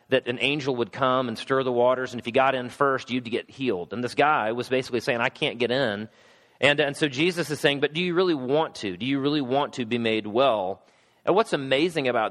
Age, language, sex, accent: 30-49, English, male, American